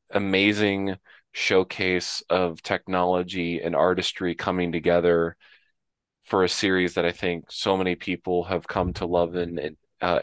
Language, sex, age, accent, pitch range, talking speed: English, male, 20-39, American, 85-95 Hz, 135 wpm